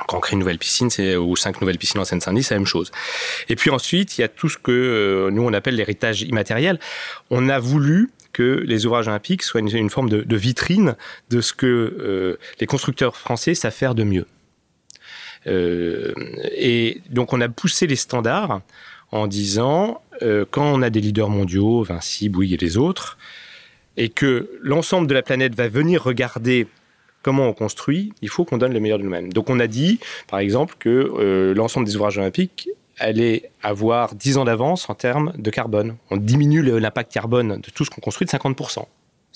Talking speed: 200 wpm